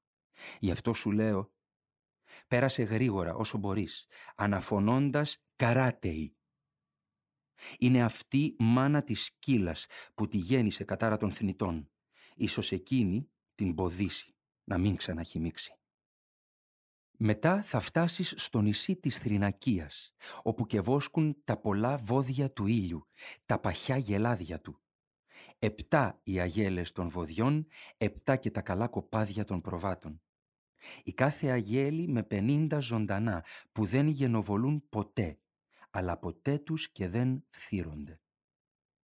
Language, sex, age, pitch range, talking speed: Greek, male, 40-59, 100-130 Hz, 115 wpm